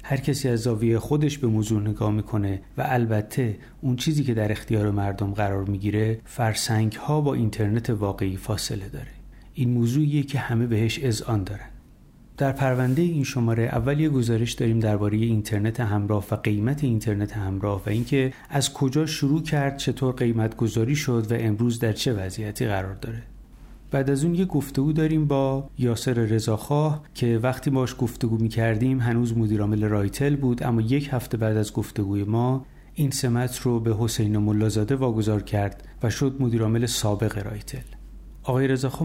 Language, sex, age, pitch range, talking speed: Persian, male, 30-49, 105-130 Hz, 165 wpm